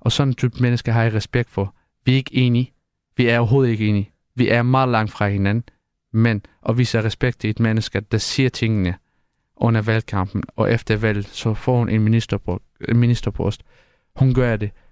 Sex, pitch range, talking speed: male, 105-125 Hz, 205 wpm